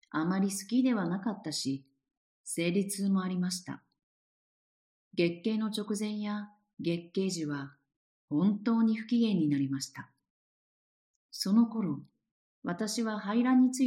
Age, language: 40-59, Japanese